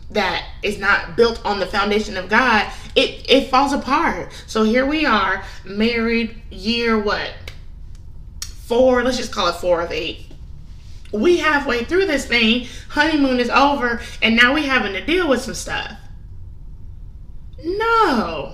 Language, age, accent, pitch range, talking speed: English, 20-39, American, 200-255 Hz, 150 wpm